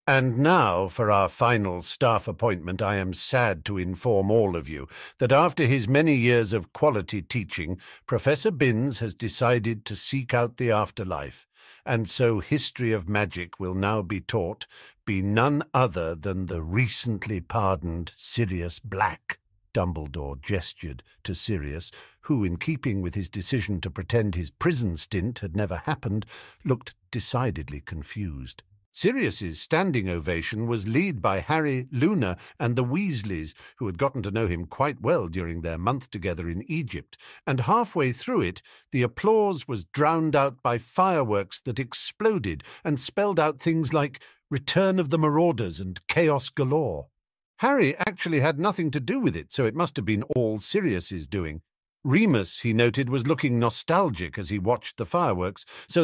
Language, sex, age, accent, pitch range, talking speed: English, male, 60-79, British, 95-140 Hz, 160 wpm